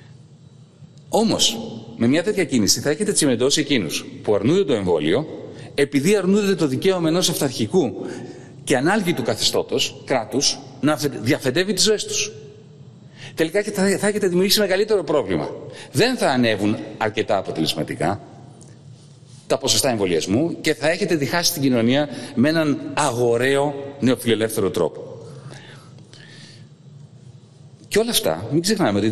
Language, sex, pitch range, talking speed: Greek, male, 125-165 Hz, 120 wpm